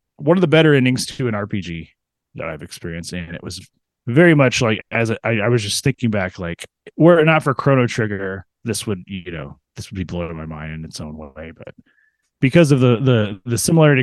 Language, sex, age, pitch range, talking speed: English, male, 30-49, 90-125 Hz, 225 wpm